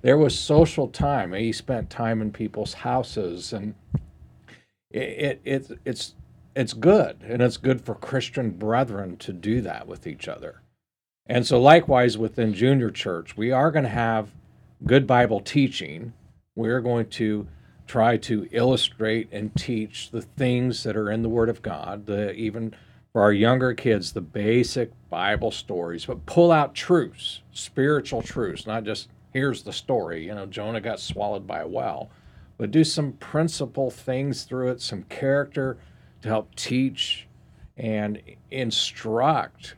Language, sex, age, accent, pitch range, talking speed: English, male, 50-69, American, 110-130 Hz, 155 wpm